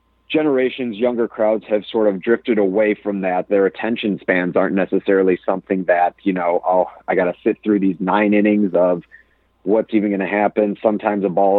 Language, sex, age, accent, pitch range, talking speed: English, male, 30-49, American, 95-115 Hz, 190 wpm